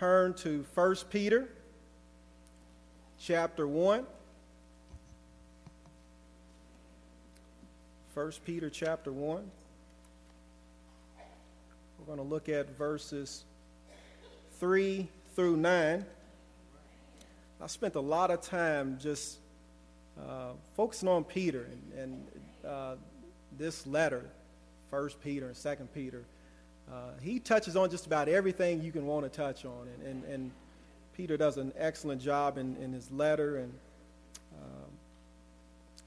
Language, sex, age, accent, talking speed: English, male, 40-59, American, 110 wpm